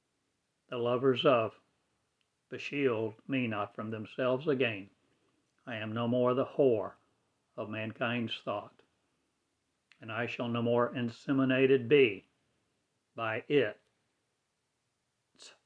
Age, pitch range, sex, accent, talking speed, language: 60-79, 115-130 Hz, male, American, 105 wpm, English